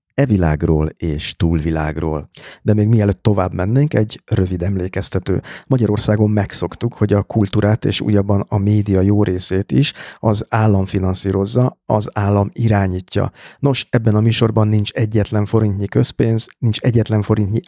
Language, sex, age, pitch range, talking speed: Hungarian, male, 50-69, 95-115 Hz, 140 wpm